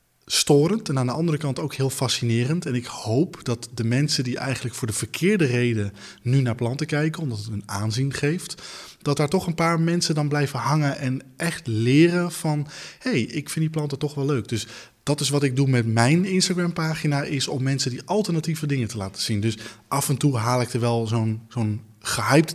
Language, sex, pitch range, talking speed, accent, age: Dutch, male, 115-145 Hz, 215 wpm, Dutch, 20-39